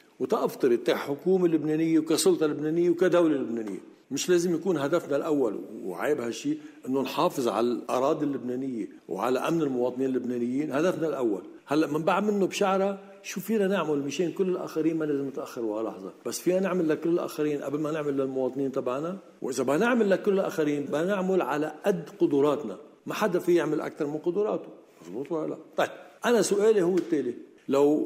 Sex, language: male, Arabic